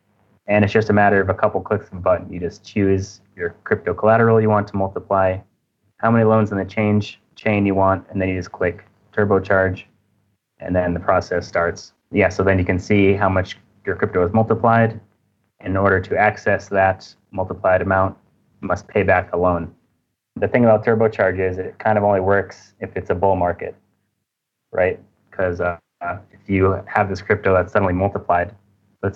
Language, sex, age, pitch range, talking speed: English, male, 20-39, 95-110 Hz, 190 wpm